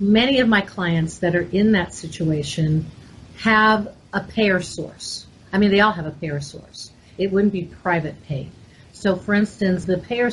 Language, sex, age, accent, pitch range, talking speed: English, female, 50-69, American, 160-200 Hz, 180 wpm